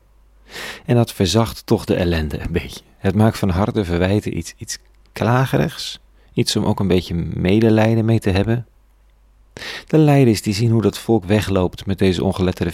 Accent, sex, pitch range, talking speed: Dutch, male, 90-110 Hz, 170 wpm